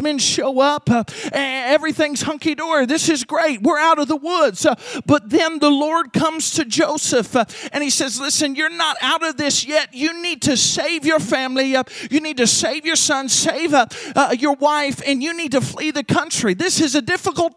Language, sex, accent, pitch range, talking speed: English, male, American, 255-310 Hz, 210 wpm